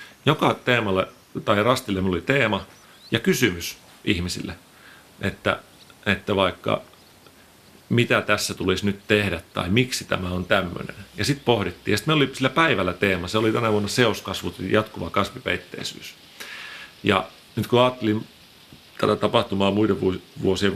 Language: Finnish